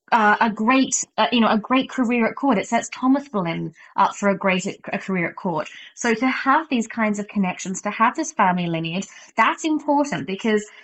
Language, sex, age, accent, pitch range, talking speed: English, female, 20-39, British, 195-240 Hz, 215 wpm